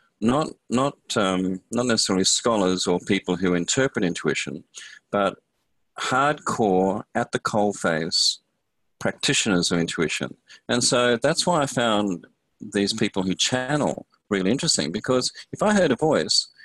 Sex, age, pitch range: male, 40-59, 90-115 Hz